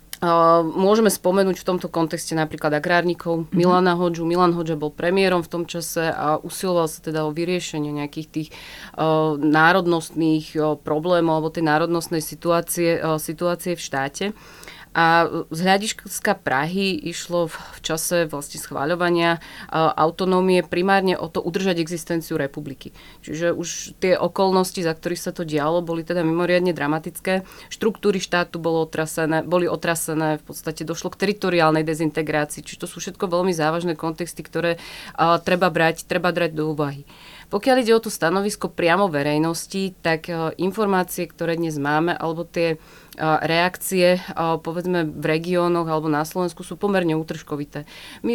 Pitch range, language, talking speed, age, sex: 160-180 Hz, Slovak, 140 wpm, 30-49, female